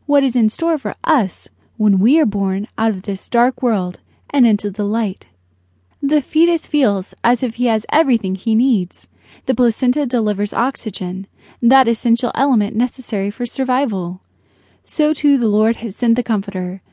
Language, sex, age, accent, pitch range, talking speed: English, female, 20-39, American, 210-275 Hz, 165 wpm